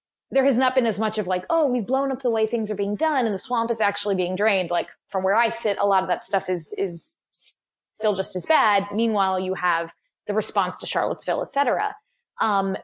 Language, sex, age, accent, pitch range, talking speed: English, female, 20-39, American, 190-275 Hz, 240 wpm